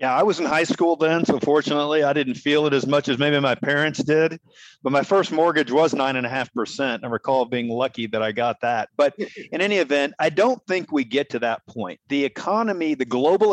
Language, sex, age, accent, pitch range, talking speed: English, male, 40-59, American, 130-160 Hz, 240 wpm